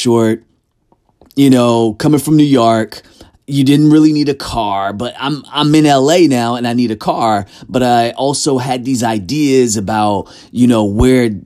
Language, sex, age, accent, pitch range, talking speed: English, male, 30-49, American, 110-140 Hz, 180 wpm